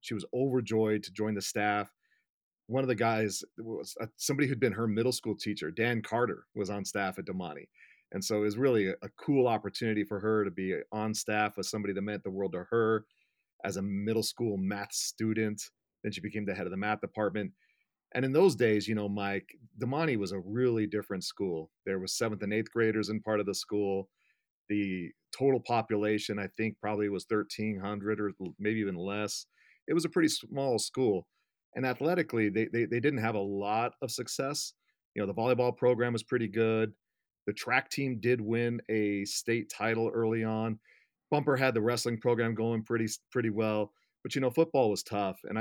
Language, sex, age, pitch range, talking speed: English, male, 40-59, 105-115 Hz, 195 wpm